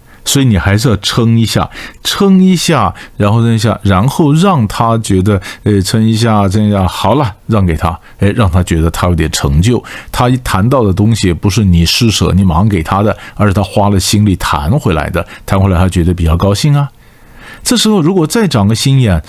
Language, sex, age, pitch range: Chinese, male, 50-69, 100-150 Hz